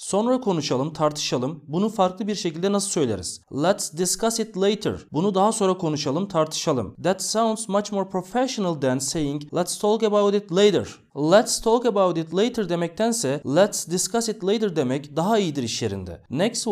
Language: English